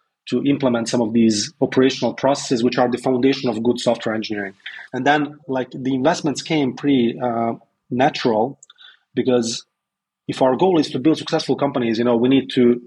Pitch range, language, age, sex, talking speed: 120-135 Hz, English, 30-49, male, 175 wpm